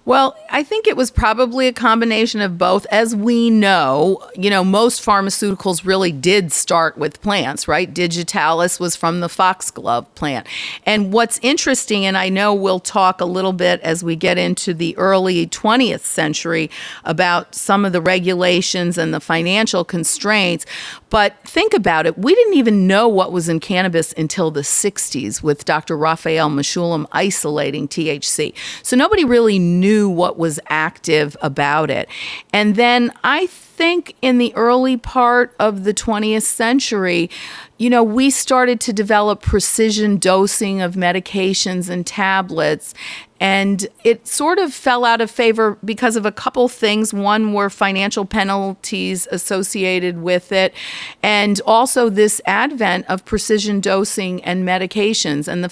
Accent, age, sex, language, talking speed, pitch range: American, 40-59, female, English, 155 wpm, 175-220 Hz